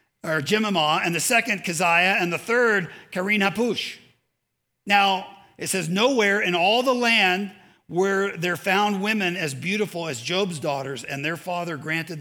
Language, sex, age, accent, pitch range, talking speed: English, male, 50-69, American, 170-210 Hz, 155 wpm